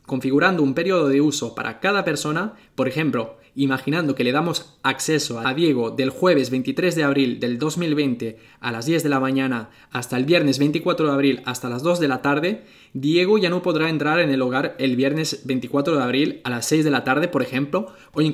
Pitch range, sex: 135-175 Hz, male